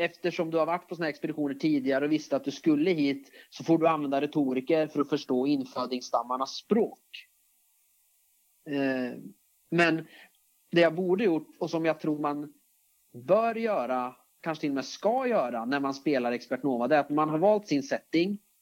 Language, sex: Swedish, male